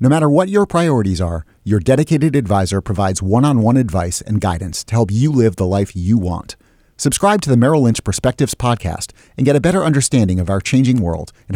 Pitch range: 95-130 Hz